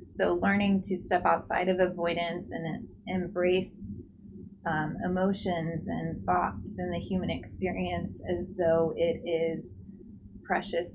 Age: 20-39